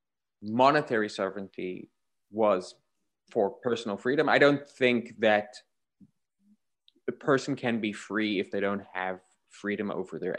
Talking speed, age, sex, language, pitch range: 125 wpm, 20-39, male, English, 105-135 Hz